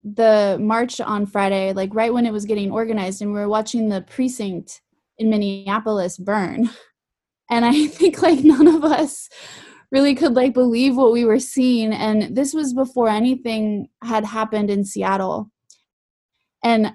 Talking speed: 160 wpm